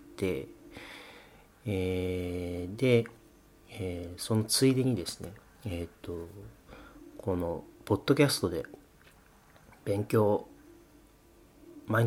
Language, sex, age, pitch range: Japanese, male, 40-59, 95-125 Hz